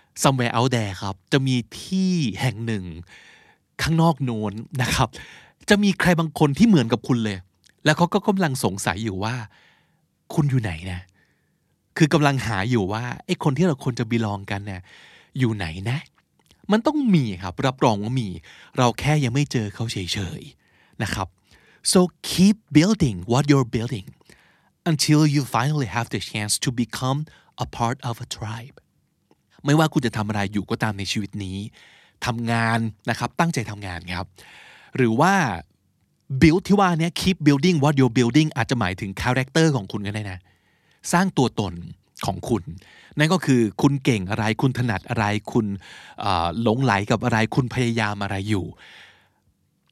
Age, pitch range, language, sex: 20-39, 105-150 Hz, Thai, male